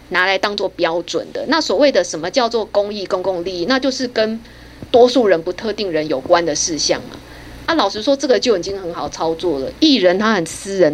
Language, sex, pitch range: Chinese, female, 180-250 Hz